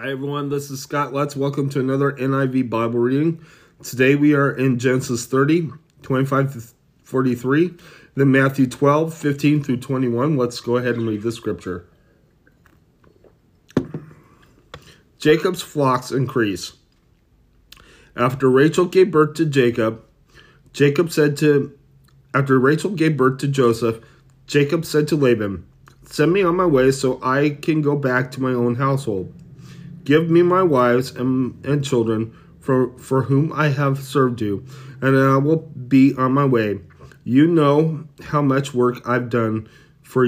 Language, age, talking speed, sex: English, 30-49, 145 wpm, male